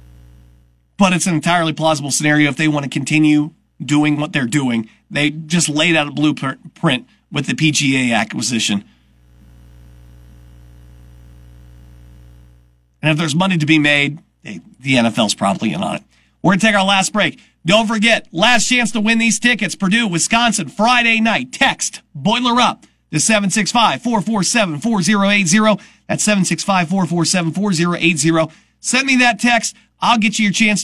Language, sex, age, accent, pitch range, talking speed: English, male, 40-59, American, 145-215 Hz, 145 wpm